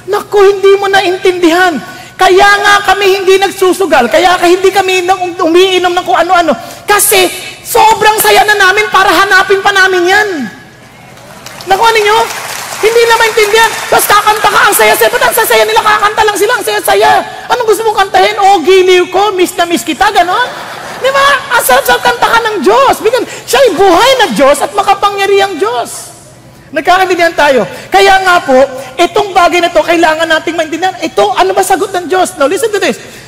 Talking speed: 170 wpm